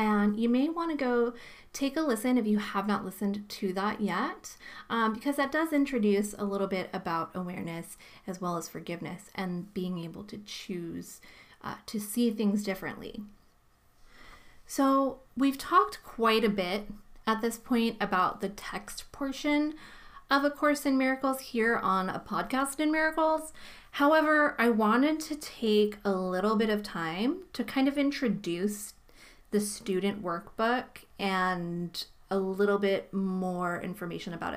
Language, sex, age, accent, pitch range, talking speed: English, female, 30-49, American, 190-260 Hz, 155 wpm